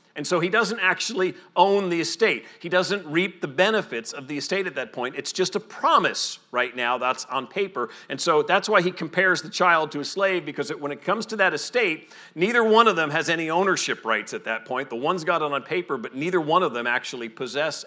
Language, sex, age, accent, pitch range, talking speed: English, male, 40-59, American, 125-185 Hz, 235 wpm